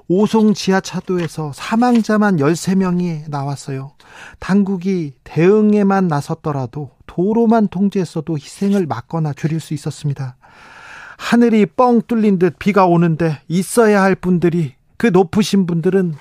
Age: 40-59